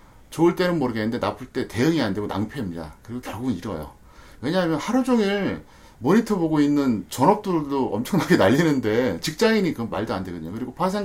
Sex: male